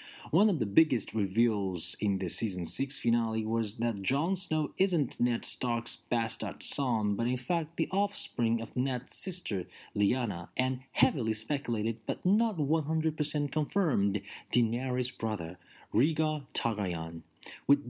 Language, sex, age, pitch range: Chinese, male, 40-59, 105-155 Hz